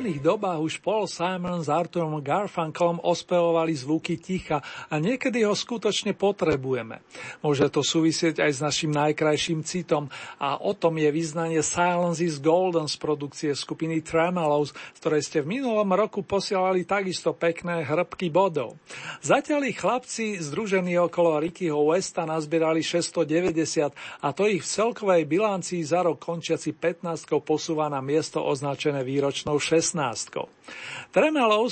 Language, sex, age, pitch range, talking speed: Slovak, male, 40-59, 150-180 Hz, 135 wpm